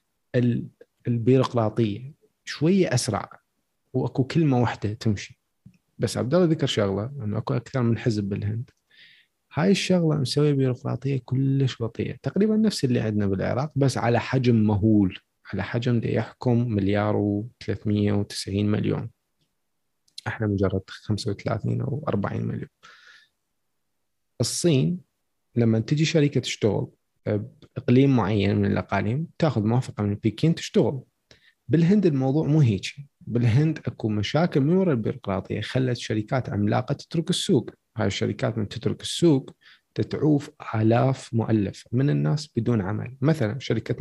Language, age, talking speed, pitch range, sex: Arabic, 30-49, 120 wpm, 105-140 Hz, male